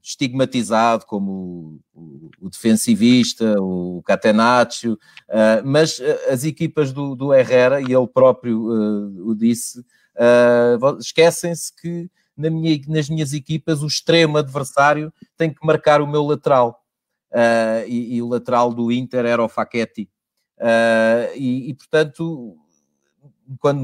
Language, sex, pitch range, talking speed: Portuguese, male, 115-150 Hz, 115 wpm